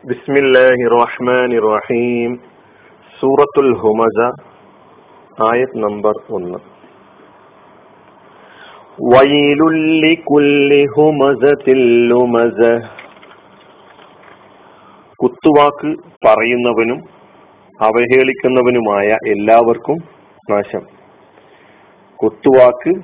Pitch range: 115-145 Hz